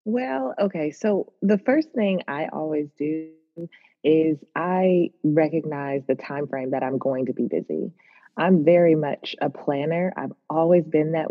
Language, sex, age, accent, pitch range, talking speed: English, female, 20-39, American, 145-185 Hz, 160 wpm